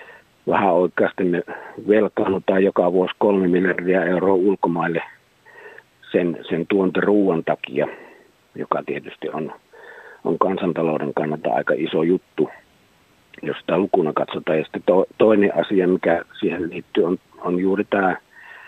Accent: native